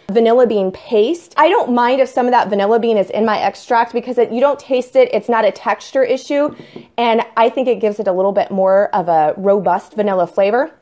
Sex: female